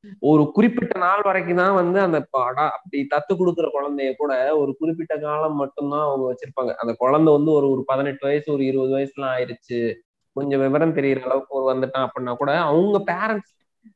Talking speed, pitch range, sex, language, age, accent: 170 wpm, 125-155 Hz, male, Tamil, 20-39, native